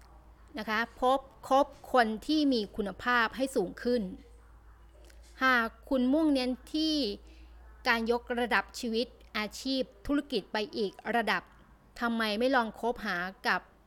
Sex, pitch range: female, 205-260 Hz